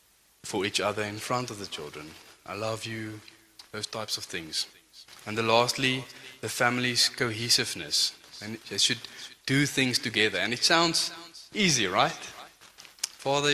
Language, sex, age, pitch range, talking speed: English, male, 20-39, 110-140 Hz, 145 wpm